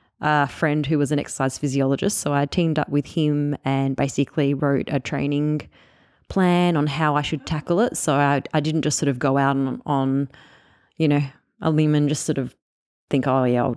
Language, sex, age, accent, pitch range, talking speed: English, female, 20-39, Australian, 135-150 Hz, 210 wpm